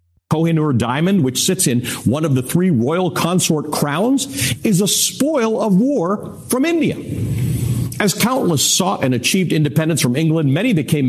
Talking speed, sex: 155 wpm, male